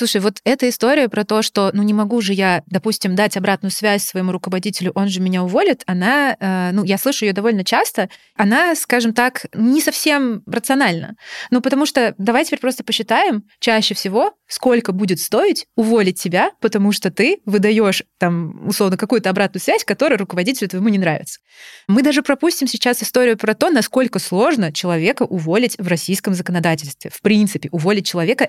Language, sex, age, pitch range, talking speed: Russian, female, 20-39, 180-230 Hz, 175 wpm